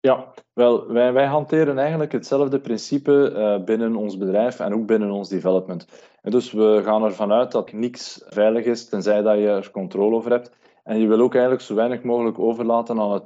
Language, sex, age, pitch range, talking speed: Dutch, male, 20-39, 105-130 Hz, 205 wpm